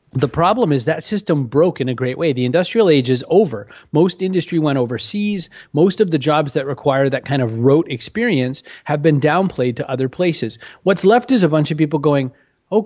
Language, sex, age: English, male, 30-49